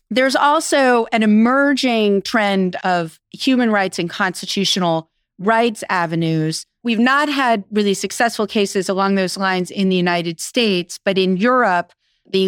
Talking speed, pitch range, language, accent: 140 wpm, 175-210 Hz, English, American